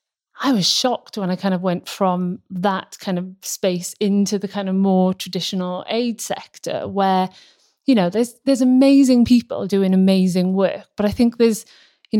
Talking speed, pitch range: 175 wpm, 190-220 Hz